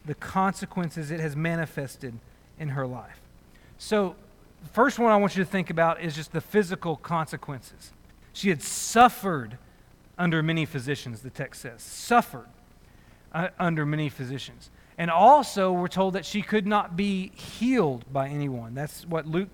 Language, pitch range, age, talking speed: English, 150-215 Hz, 40-59, 160 wpm